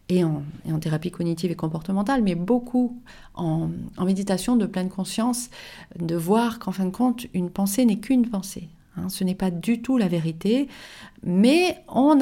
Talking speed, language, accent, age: 180 wpm, French, French, 40-59